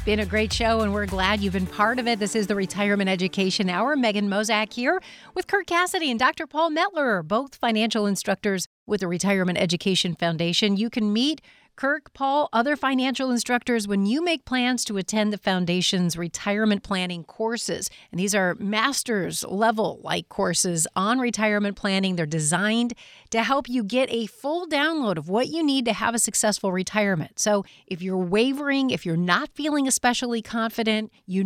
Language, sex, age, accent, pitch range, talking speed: English, female, 40-59, American, 190-235 Hz, 175 wpm